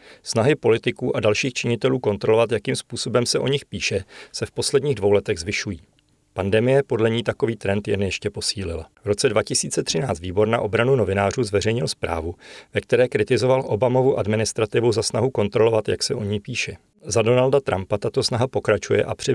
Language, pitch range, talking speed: Czech, 100-120 Hz, 170 wpm